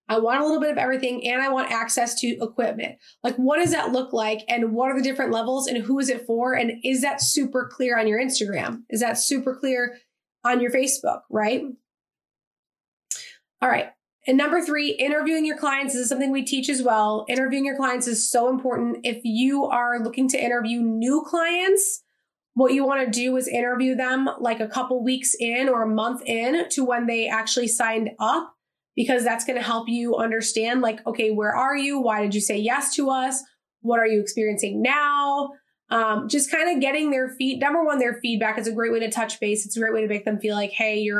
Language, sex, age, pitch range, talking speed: English, female, 20-39, 230-270 Hz, 220 wpm